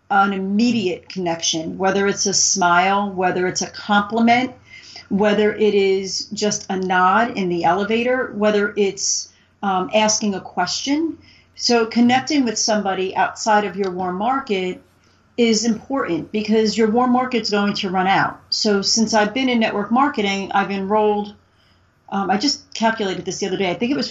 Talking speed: 165 wpm